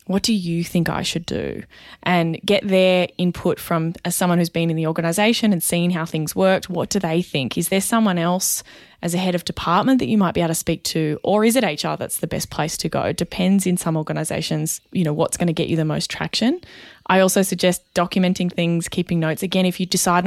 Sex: female